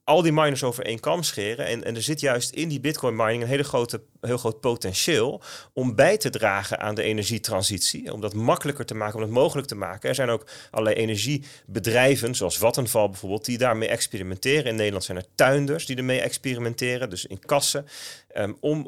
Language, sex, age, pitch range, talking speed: Dutch, male, 30-49, 115-150 Hz, 195 wpm